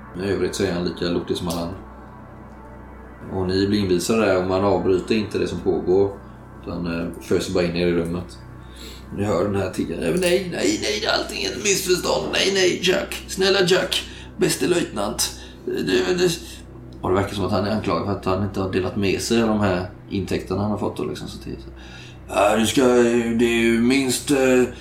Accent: native